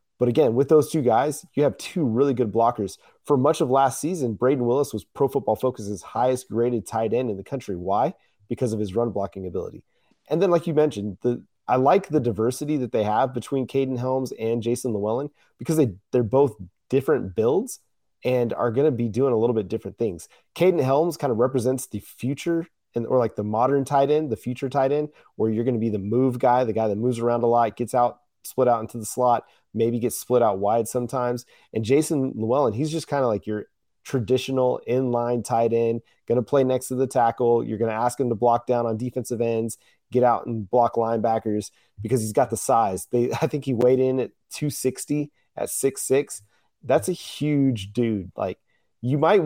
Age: 30-49